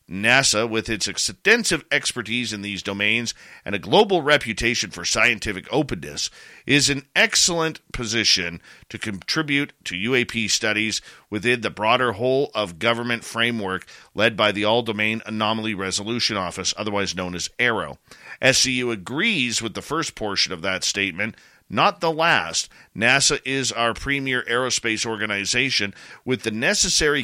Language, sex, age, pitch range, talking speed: English, male, 50-69, 105-130 Hz, 135 wpm